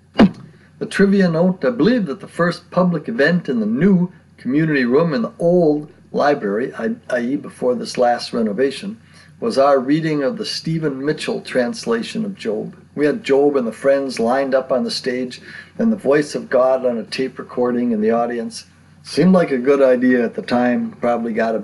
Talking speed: 190 wpm